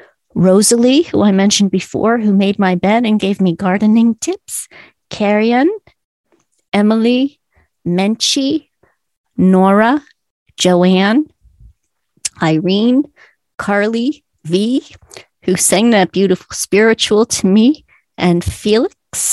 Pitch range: 195-250 Hz